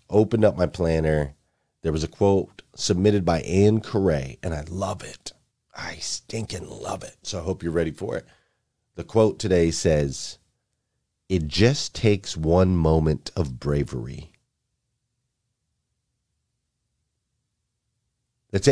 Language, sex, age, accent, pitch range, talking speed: English, male, 40-59, American, 90-115 Hz, 125 wpm